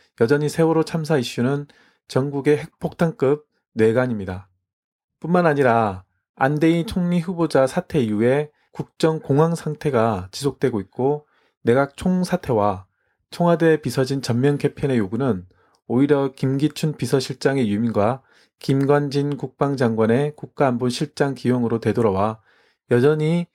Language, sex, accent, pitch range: Korean, male, native, 115-155 Hz